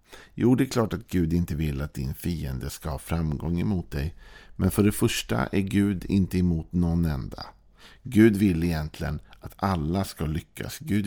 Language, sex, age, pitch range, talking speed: Swedish, male, 50-69, 80-105 Hz, 185 wpm